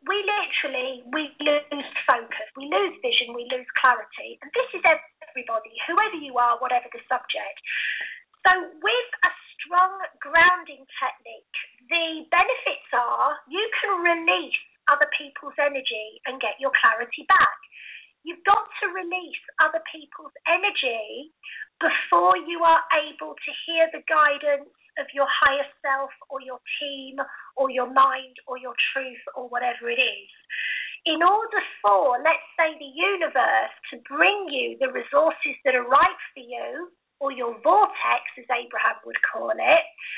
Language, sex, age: English, female, 30-49